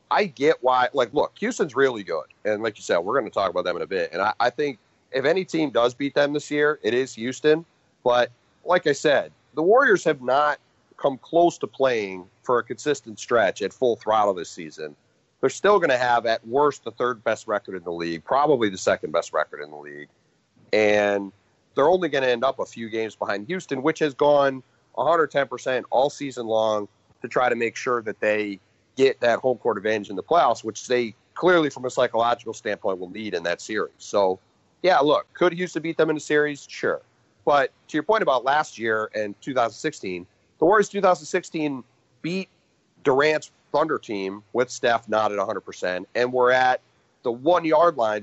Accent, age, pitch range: American, 30-49, 105-150 Hz